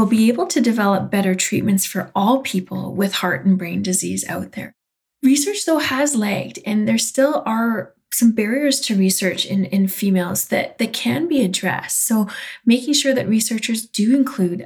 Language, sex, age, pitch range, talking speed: English, female, 30-49, 190-240 Hz, 175 wpm